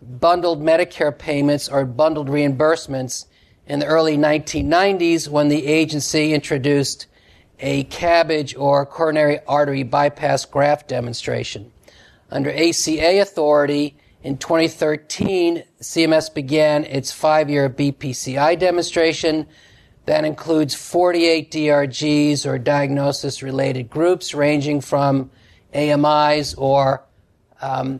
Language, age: English, 40-59